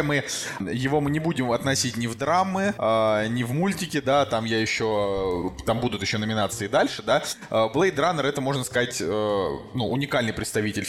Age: 20-39